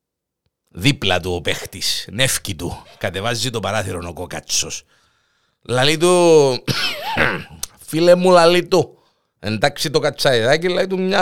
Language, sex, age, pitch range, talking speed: Greek, male, 50-69, 100-155 Hz, 120 wpm